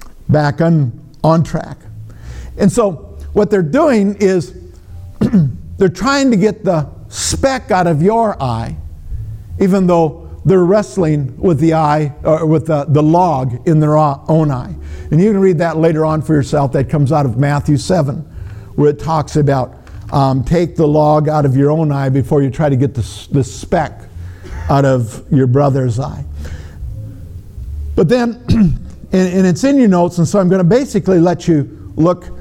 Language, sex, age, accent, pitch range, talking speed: English, male, 50-69, American, 110-165 Hz, 170 wpm